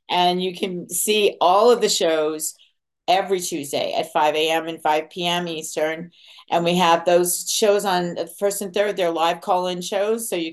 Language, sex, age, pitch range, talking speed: English, female, 50-69, 165-195 Hz, 190 wpm